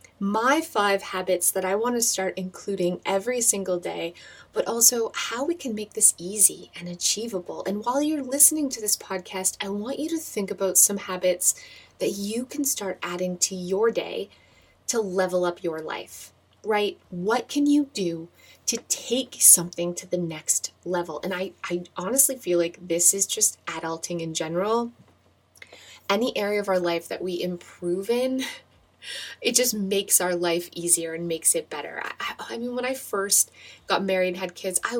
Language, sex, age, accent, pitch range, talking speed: English, female, 20-39, American, 175-225 Hz, 180 wpm